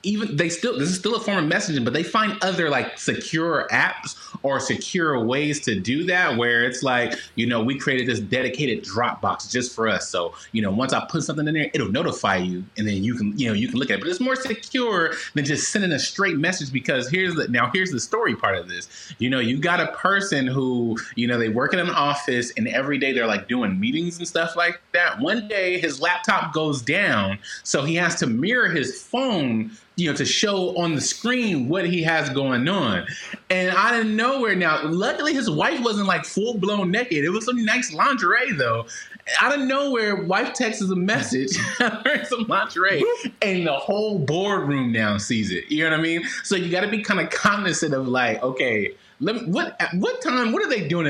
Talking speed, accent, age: 225 wpm, American, 20-39